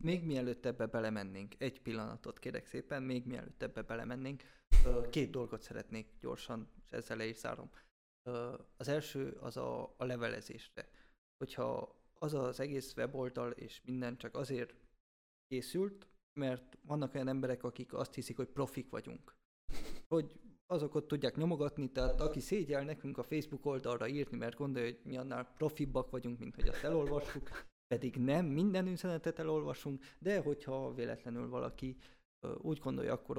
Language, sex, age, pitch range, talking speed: Hungarian, male, 20-39, 120-140 Hz, 145 wpm